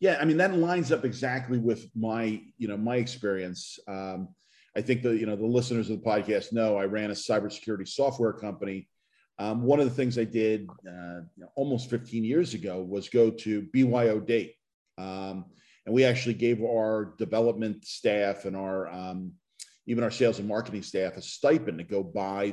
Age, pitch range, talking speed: 40-59, 105-125 Hz, 190 wpm